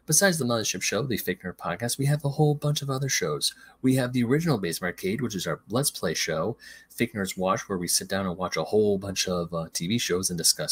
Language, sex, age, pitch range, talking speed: English, male, 30-49, 100-145 Hz, 245 wpm